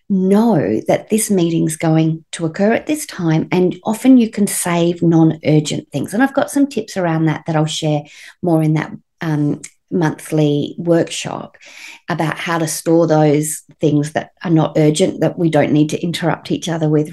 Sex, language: female, English